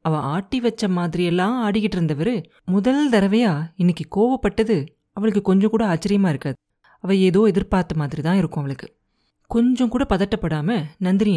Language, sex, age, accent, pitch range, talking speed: Tamil, female, 30-49, native, 160-205 Hz, 130 wpm